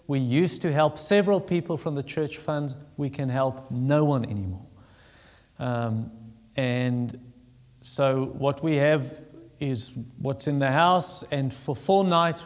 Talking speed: 150 wpm